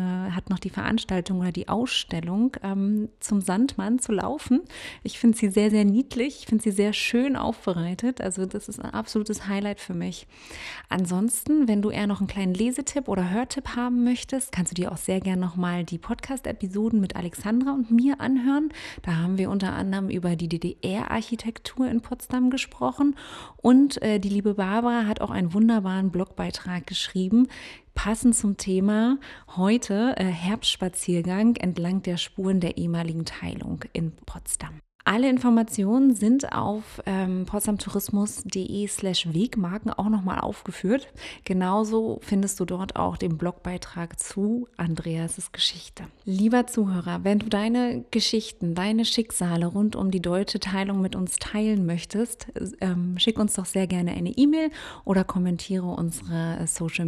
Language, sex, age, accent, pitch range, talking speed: German, female, 30-49, German, 185-235 Hz, 150 wpm